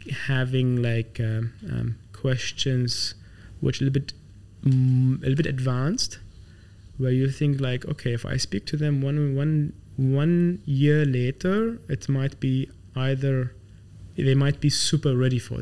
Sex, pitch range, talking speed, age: male, 115-135 Hz, 150 wpm, 20-39